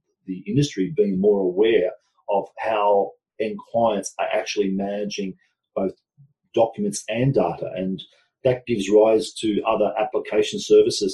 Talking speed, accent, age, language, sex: 130 wpm, Australian, 40-59, English, male